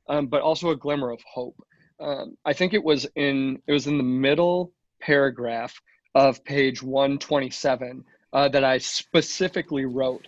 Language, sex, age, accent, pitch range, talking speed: English, male, 20-39, American, 130-155 Hz, 160 wpm